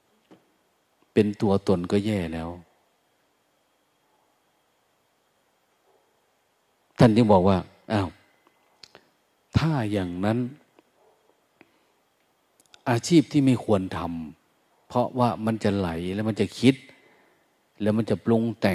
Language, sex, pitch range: Thai, male, 95-120 Hz